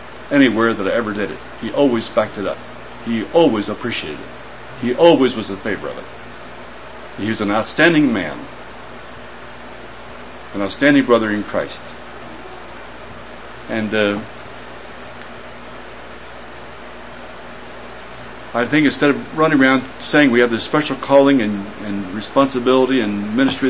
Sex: male